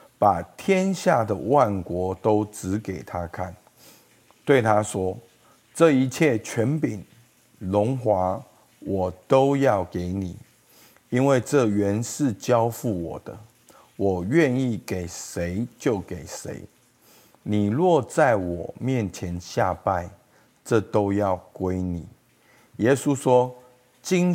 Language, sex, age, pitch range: Chinese, male, 50-69, 95-125 Hz